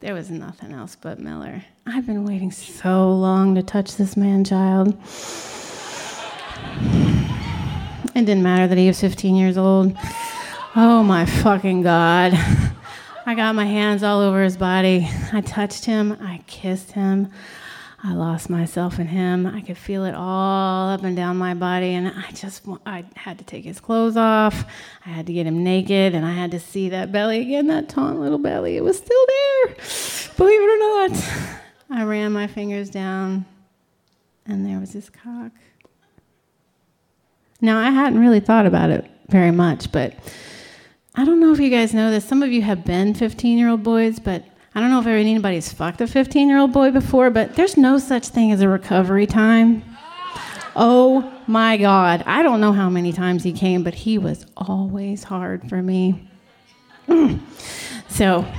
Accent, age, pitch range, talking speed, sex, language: American, 30-49, 185-230 Hz, 175 wpm, female, English